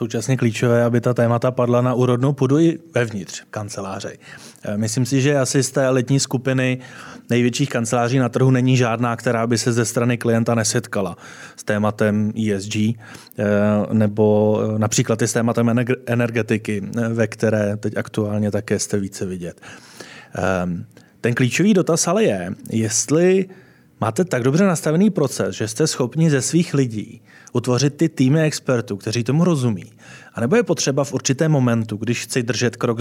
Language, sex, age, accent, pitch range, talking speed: Czech, male, 30-49, native, 115-130 Hz, 155 wpm